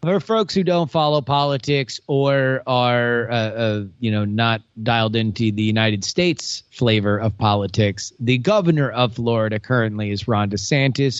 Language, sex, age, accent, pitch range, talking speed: English, male, 30-49, American, 115-140 Hz, 155 wpm